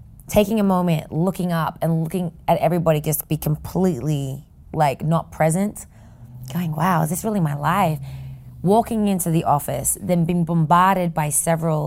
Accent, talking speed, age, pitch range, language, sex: American, 155 wpm, 20-39, 155-195 Hz, English, female